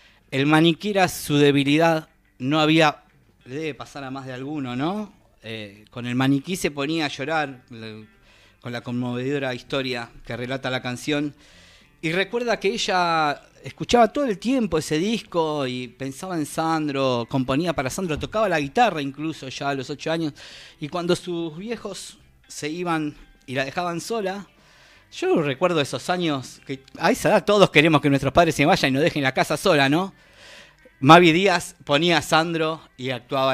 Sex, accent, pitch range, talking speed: male, Argentinian, 130-170 Hz, 175 wpm